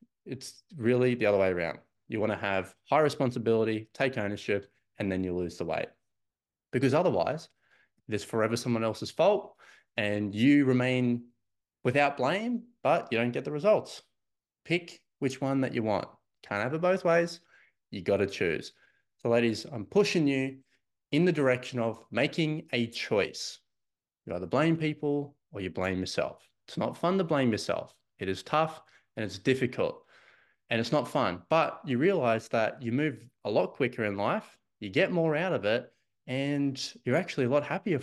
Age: 20-39